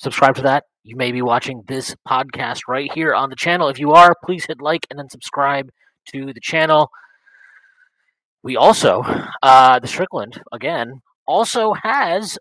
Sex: male